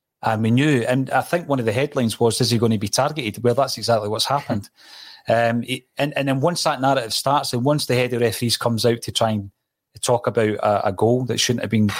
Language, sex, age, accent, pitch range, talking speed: English, male, 30-49, British, 115-145 Hz, 250 wpm